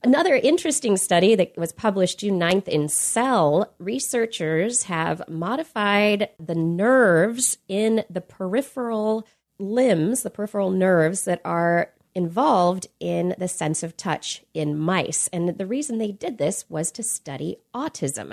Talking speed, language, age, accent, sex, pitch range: 140 wpm, English, 30-49, American, female, 160-220 Hz